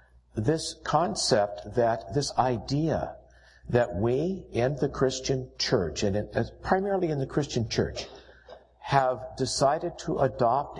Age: 60-79